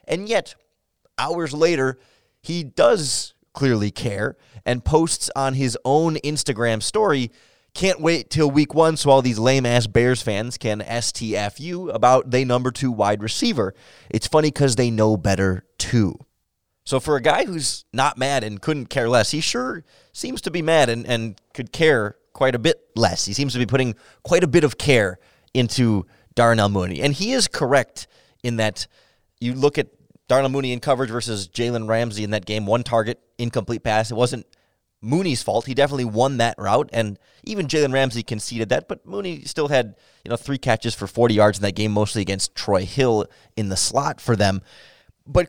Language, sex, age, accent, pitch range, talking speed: English, male, 30-49, American, 110-145 Hz, 185 wpm